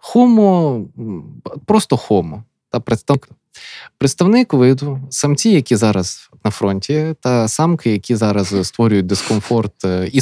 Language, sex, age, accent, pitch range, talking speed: Ukrainian, male, 20-39, native, 105-145 Hz, 110 wpm